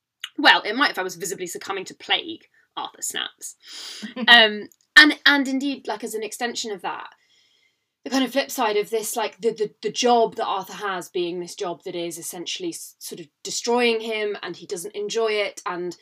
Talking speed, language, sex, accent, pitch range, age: 200 wpm, English, female, British, 190-255 Hz, 20-39